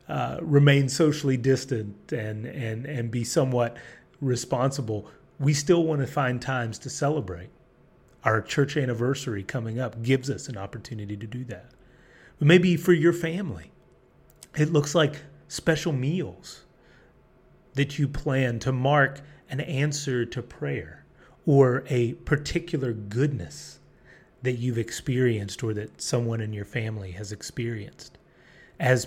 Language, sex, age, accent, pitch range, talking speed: English, male, 30-49, American, 120-150 Hz, 130 wpm